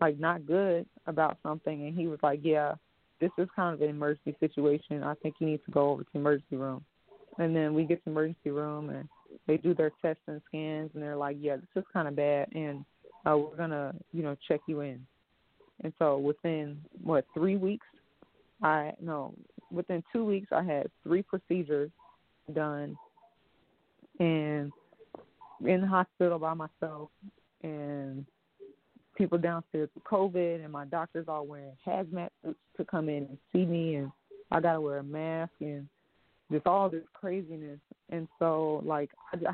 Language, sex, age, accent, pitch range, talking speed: English, female, 20-39, American, 150-175 Hz, 175 wpm